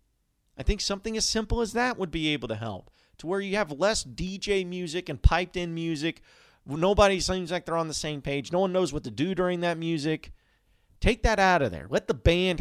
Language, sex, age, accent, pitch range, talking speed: English, male, 40-59, American, 120-170 Hz, 225 wpm